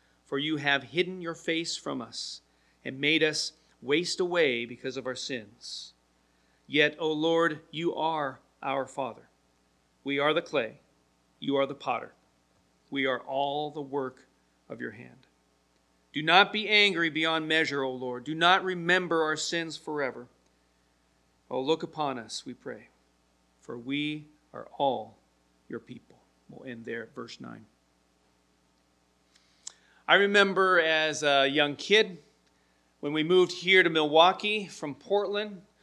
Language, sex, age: English, male, 40-59